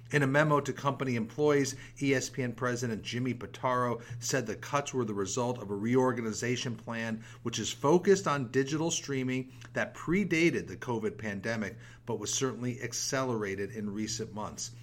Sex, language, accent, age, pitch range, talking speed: male, English, American, 40-59, 115-135 Hz, 155 wpm